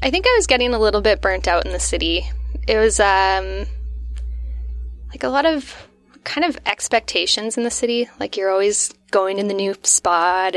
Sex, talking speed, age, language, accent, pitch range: female, 195 wpm, 10-29, English, American, 175-205 Hz